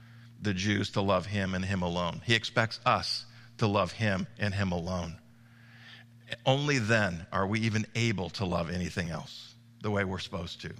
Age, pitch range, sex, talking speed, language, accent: 50-69, 100-120 Hz, male, 180 wpm, English, American